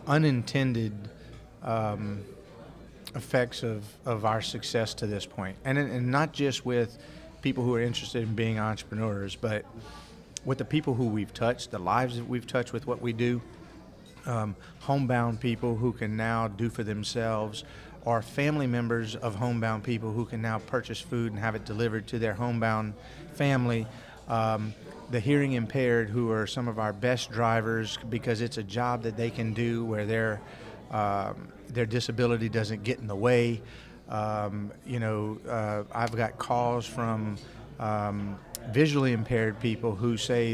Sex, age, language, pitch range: male, 40-59, English, 110-125 Hz